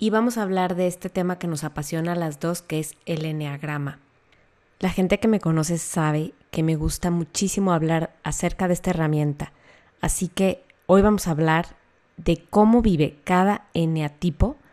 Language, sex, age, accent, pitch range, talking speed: Spanish, female, 20-39, Mexican, 155-190 Hz, 175 wpm